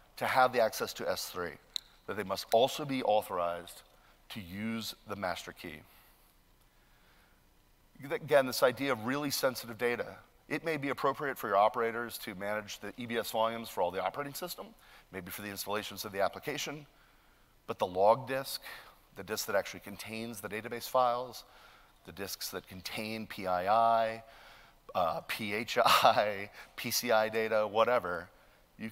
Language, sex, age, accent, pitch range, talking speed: English, male, 40-59, American, 100-130 Hz, 145 wpm